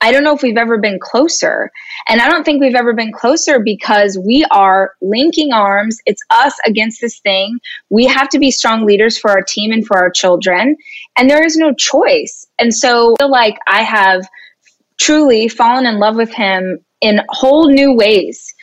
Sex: female